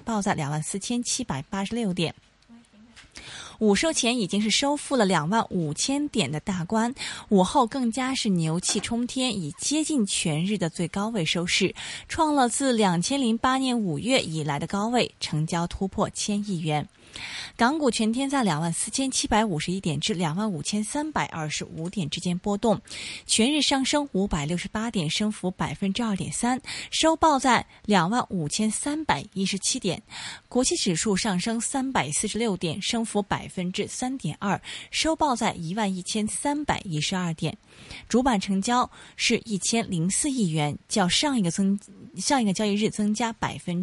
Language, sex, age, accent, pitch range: Chinese, female, 20-39, native, 180-245 Hz